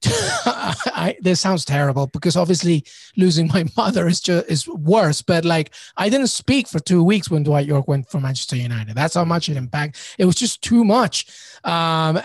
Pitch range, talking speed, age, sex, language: 155-190 Hz, 185 wpm, 30-49, male, English